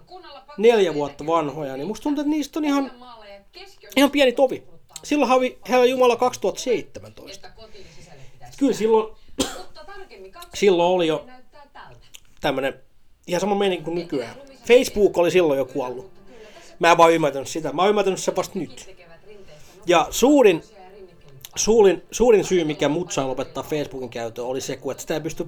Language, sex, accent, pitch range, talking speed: Finnish, male, native, 145-220 Hz, 140 wpm